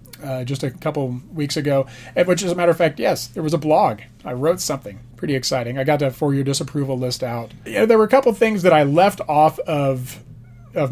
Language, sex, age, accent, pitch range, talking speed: English, male, 30-49, American, 130-160 Hz, 225 wpm